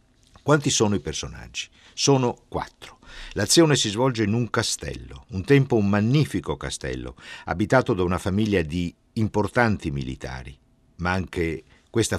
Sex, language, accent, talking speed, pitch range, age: male, Italian, native, 135 wpm, 75-110 Hz, 50-69